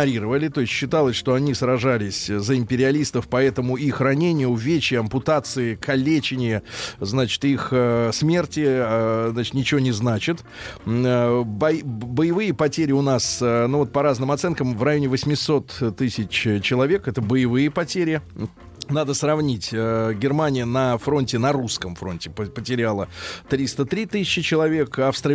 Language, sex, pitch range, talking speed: Russian, male, 120-155 Hz, 120 wpm